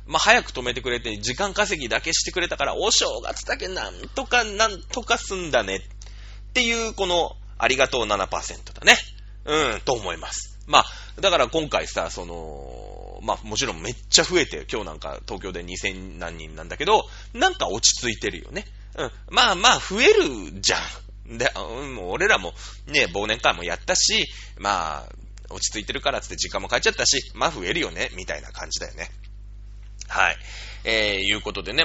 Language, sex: Japanese, male